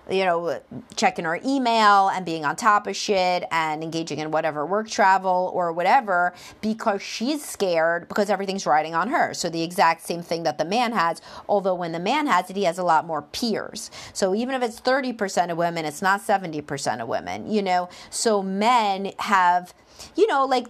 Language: English